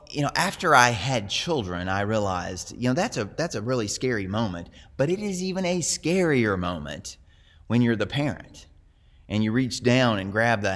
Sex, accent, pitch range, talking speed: male, American, 90-125 Hz, 195 wpm